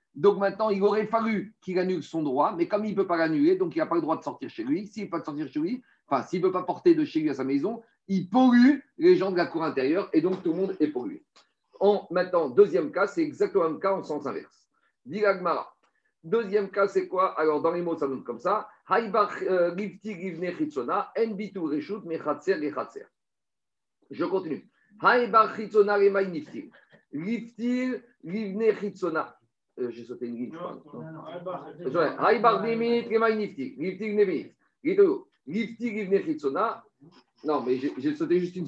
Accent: French